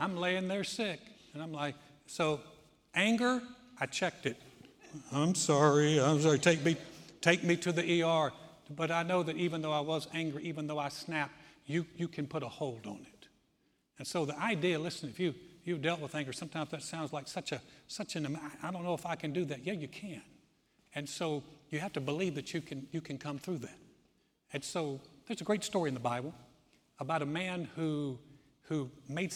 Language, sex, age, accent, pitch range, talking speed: English, male, 60-79, American, 145-180 Hz, 210 wpm